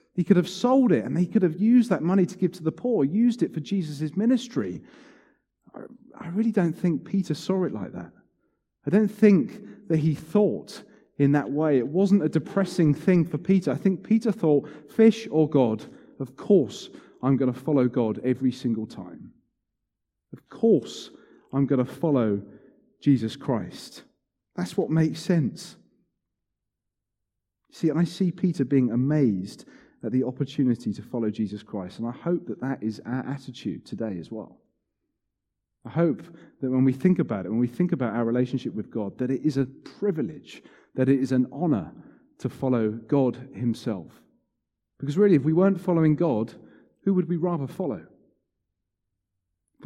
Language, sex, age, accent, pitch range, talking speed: English, male, 30-49, British, 115-175 Hz, 175 wpm